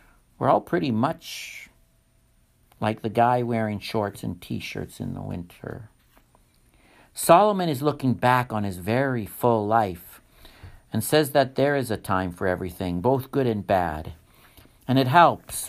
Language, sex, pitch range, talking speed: English, male, 100-125 Hz, 150 wpm